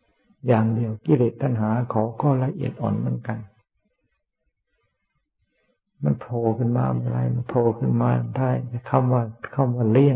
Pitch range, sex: 100-130 Hz, male